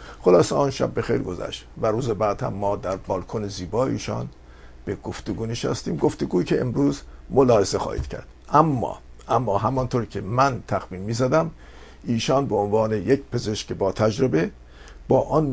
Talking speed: 160 wpm